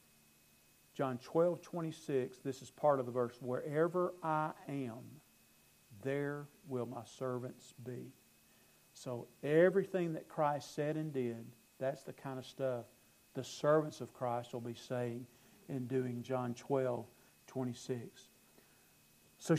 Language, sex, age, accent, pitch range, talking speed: English, male, 50-69, American, 125-170 Hz, 130 wpm